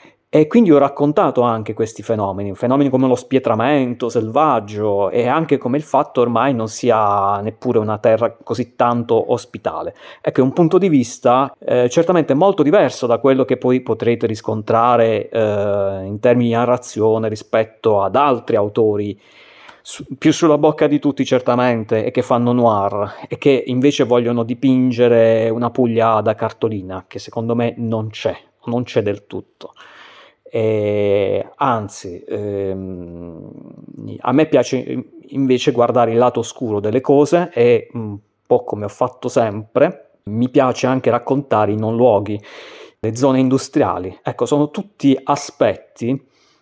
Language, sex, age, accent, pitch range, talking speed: Italian, male, 30-49, native, 110-135 Hz, 145 wpm